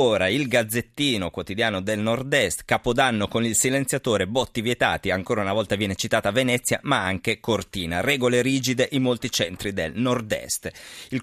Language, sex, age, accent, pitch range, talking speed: Italian, male, 30-49, native, 95-120 Hz, 160 wpm